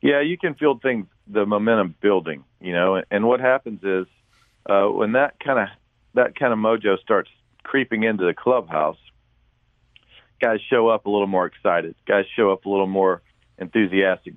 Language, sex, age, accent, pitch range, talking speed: English, male, 40-59, American, 95-115 Hz, 170 wpm